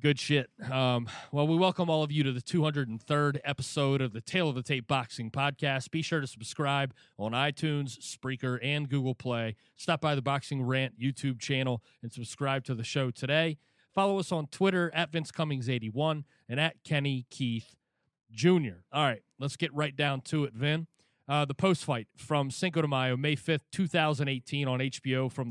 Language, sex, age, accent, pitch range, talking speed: English, male, 30-49, American, 130-160 Hz, 190 wpm